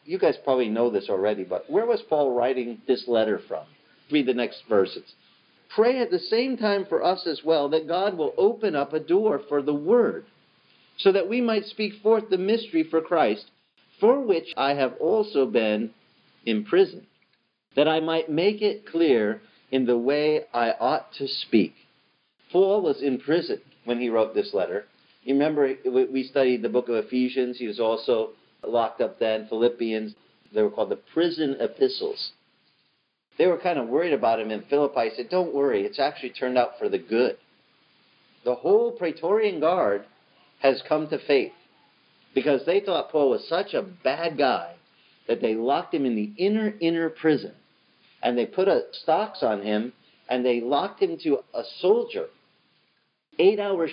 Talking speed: 175 wpm